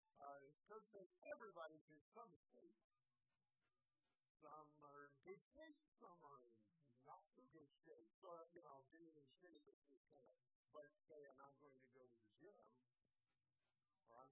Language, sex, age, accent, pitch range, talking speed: English, male, 50-69, American, 125-185 Hz, 170 wpm